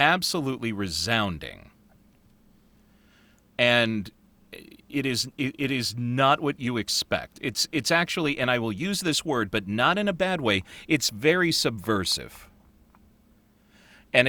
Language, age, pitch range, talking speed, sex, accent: English, 40-59, 105-155 Hz, 125 wpm, male, American